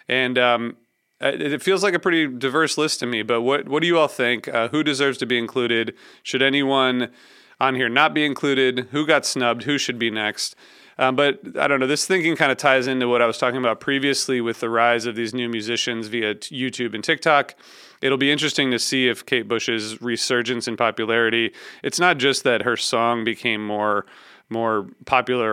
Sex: male